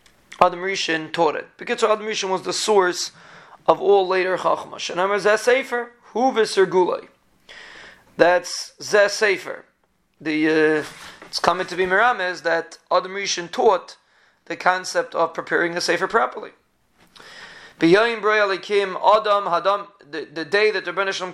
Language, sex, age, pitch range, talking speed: English, male, 30-49, 175-215 Hz, 125 wpm